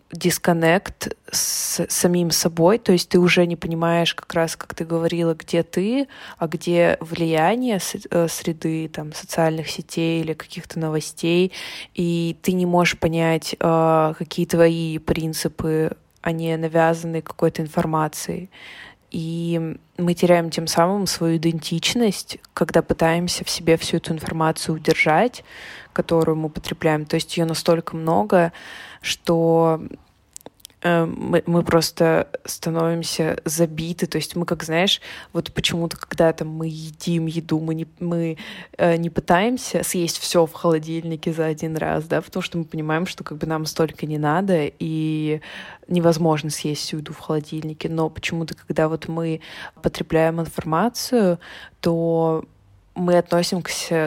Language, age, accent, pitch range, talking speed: Russian, 20-39, native, 160-175 Hz, 135 wpm